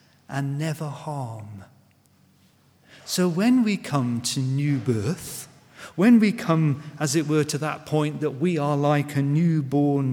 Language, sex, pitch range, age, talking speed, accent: English, male, 130-165 Hz, 40-59, 150 wpm, British